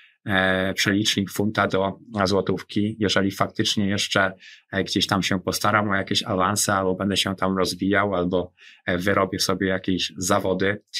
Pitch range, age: 90-100 Hz, 20-39